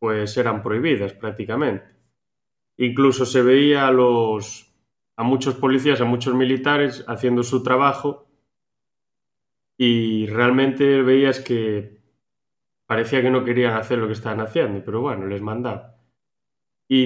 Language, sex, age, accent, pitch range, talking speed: Spanish, male, 20-39, Spanish, 115-145 Hz, 125 wpm